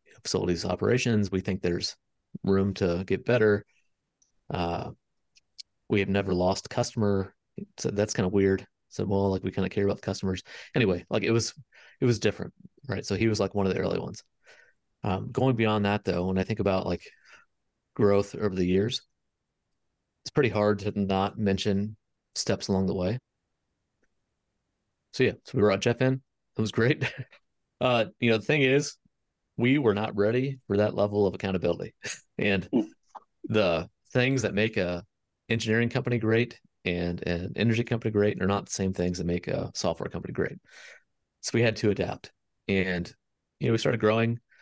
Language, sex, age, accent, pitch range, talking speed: English, male, 30-49, American, 95-115 Hz, 180 wpm